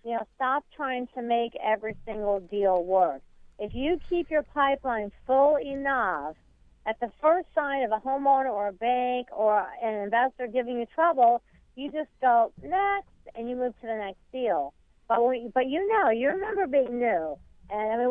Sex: female